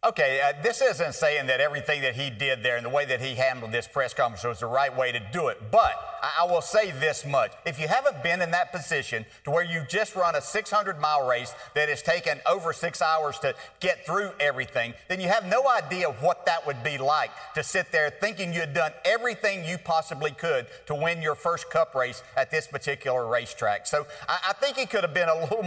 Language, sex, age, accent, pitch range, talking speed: English, male, 50-69, American, 140-190 Hz, 235 wpm